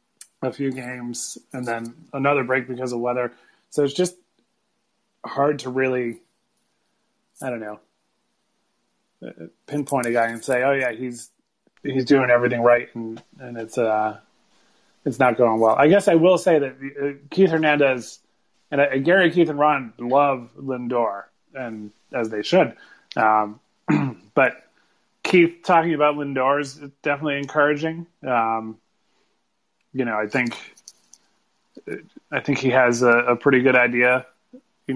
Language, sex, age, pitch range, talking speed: English, male, 30-49, 115-140 Hz, 140 wpm